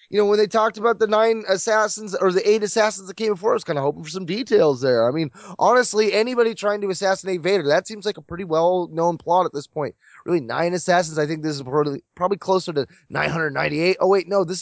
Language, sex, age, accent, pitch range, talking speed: English, male, 20-39, American, 155-215 Hz, 240 wpm